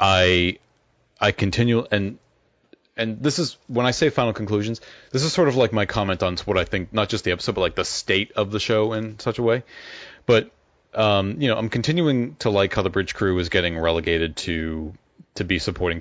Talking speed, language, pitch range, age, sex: 215 wpm, English, 85-115 Hz, 30-49, male